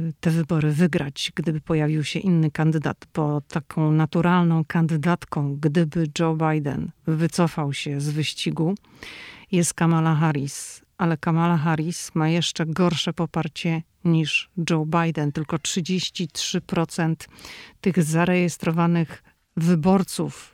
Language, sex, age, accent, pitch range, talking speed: Polish, female, 50-69, native, 160-185 Hz, 110 wpm